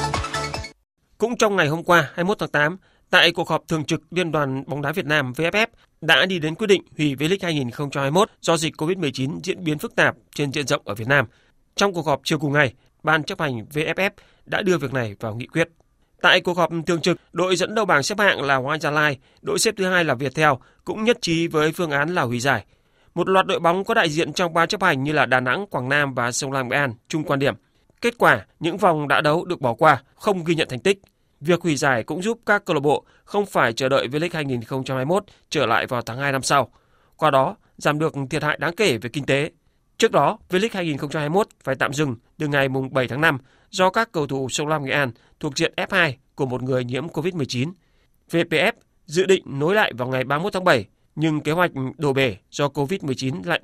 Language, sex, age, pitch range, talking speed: Vietnamese, male, 30-49, 135-175 Hz, 235 wpm